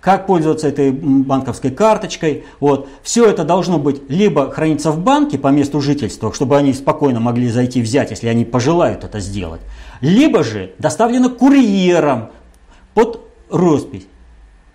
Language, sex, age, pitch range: Russian, male, 50-69, 110-180 Hz